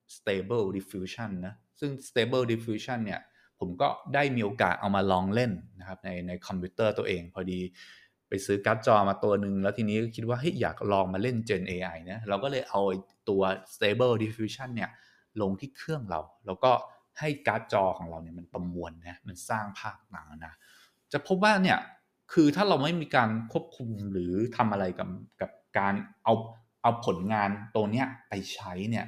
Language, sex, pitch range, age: English, male, 100-140 Hz, 20-39